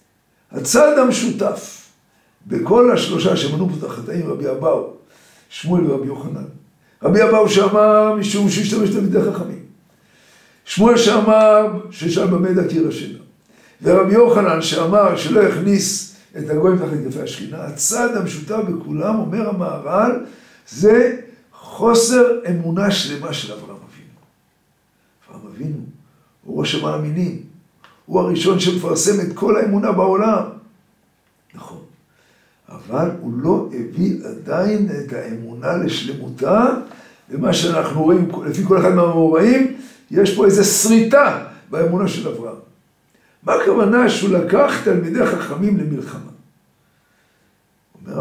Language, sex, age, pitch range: Hebrew, male, 60-79, 170-220 Hz